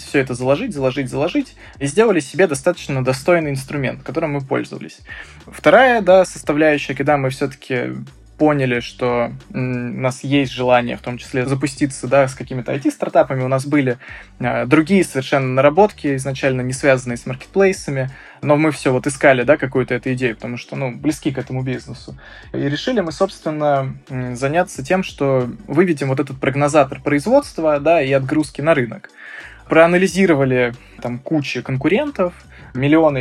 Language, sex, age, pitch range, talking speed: Russian, male, 20-39, 130-155 Hz, 150 wpm